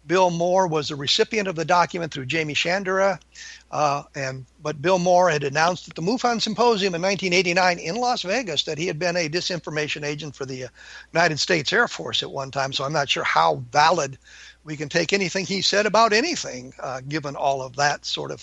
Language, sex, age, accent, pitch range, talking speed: English, male, 50-69, American, 155-210 Hz, 210 wpm